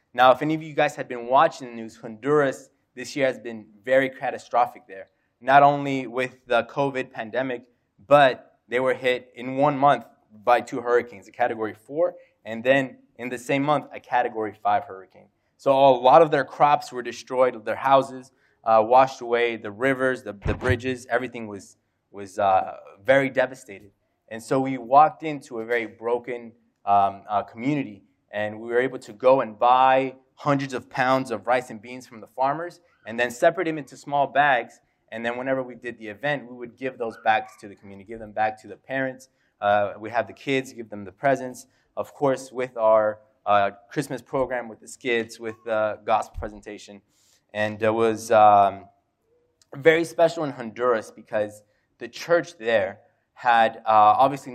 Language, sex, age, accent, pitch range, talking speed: English, male, 20-39, American, 110-135 Hz, 185 wpm